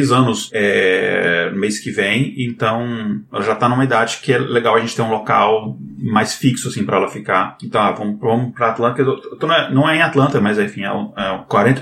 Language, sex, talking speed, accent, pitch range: Portuguese, male, 235 wpm, Brazilian, 115-140 Hz